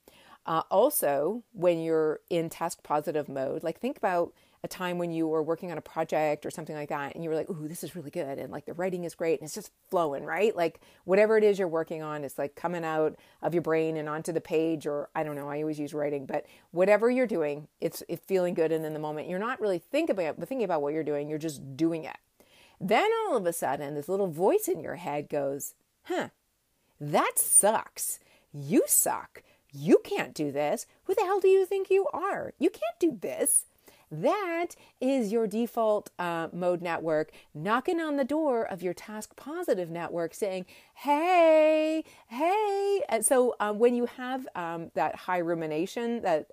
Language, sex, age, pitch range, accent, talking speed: English, female, 40-59, 155-240 Hz, American, 205 wpm